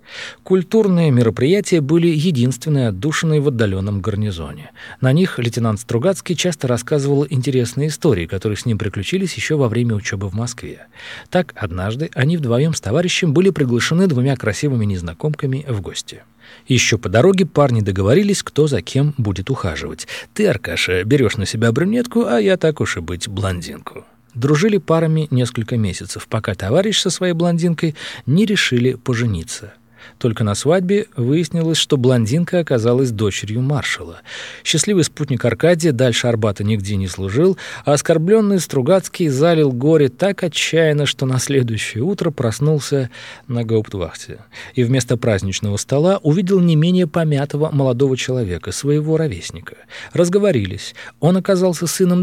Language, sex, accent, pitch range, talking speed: Russian, male, native, 115-165 Hz, 140 wpm